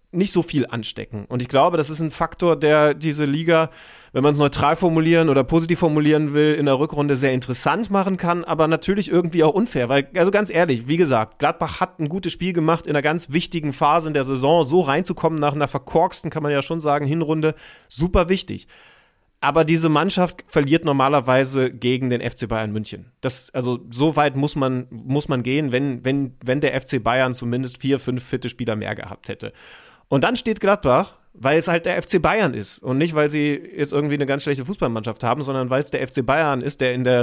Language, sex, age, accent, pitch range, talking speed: German, male, 30-49, German, 130-170 Hz, 215 wpm